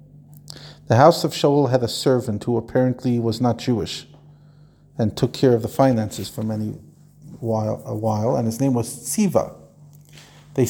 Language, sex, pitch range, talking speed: English, male, 115-145 Hz, 165 wpm